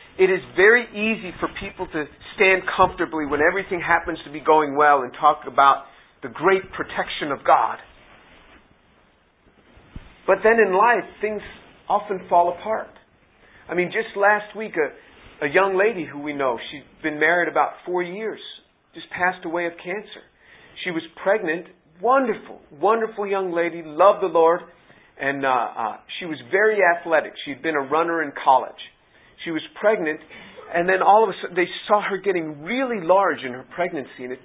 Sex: male